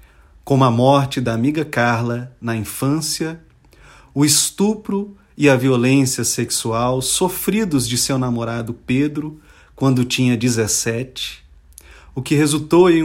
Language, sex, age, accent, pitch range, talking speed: Portuguese, male, 40-59, Brazilian, 100-160 Hz, 120 wpm